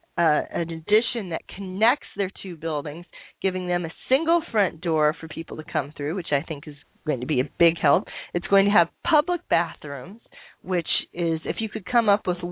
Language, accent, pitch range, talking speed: English, American, 165-200 Hz, 205 wpm